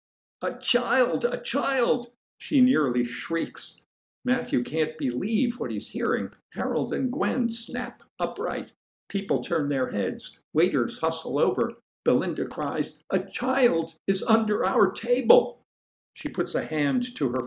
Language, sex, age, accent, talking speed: English, male, 60-79, American, 135 wpm